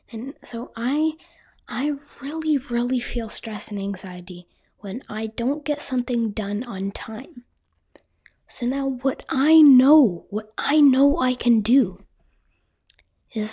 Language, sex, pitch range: English, female, 200-260 Hz